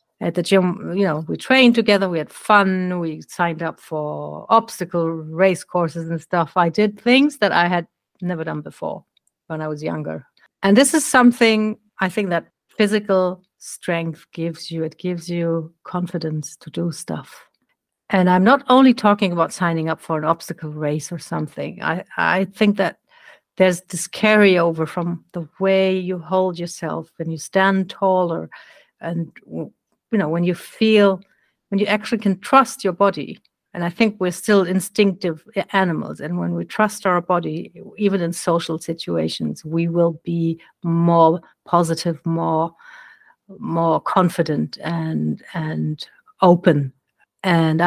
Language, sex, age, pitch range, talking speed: English, female, 50-69, 165-200 Hz, 155 wpm